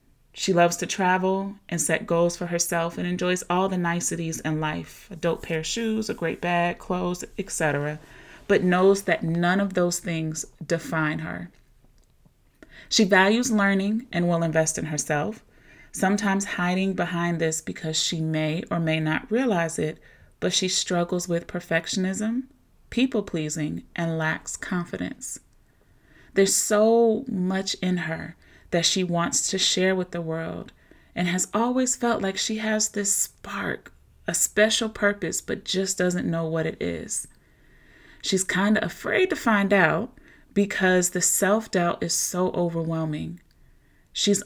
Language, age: English, 30-49